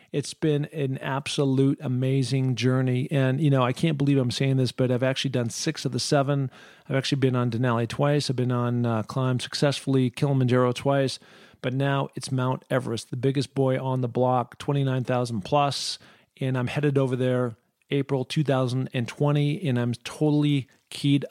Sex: male